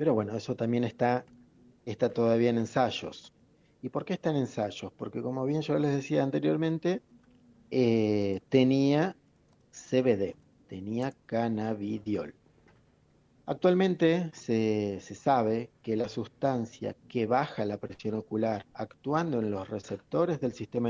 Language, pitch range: Spanish, 110-140 Hz